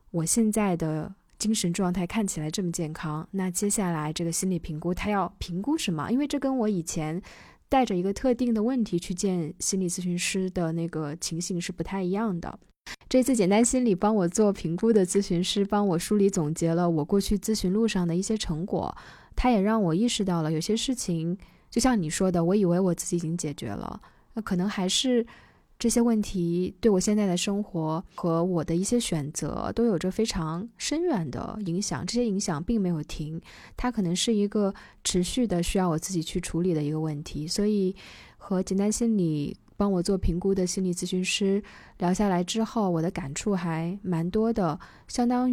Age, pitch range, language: 20-39, 170-210 Hz, Chinese